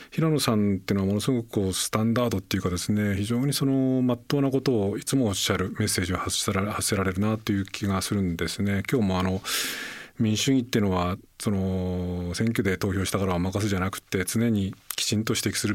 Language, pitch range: Japanese, 90-105 Hz